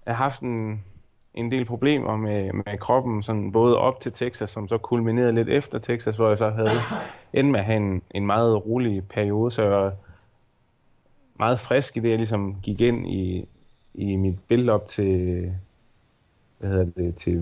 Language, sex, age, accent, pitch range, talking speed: Danish, male, 20-39, native, 95-120 Hz, 170 wpm